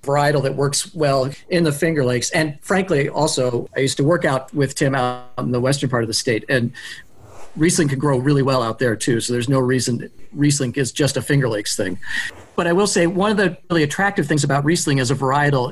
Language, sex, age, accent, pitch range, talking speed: English, male, 40-59, American, 130-165 Hz, 235 wpm